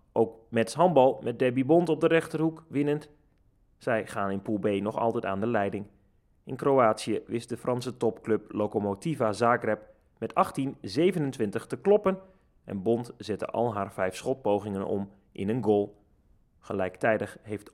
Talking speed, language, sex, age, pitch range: 150 wpm, Dutch, male, 30-49, 105-135 Hz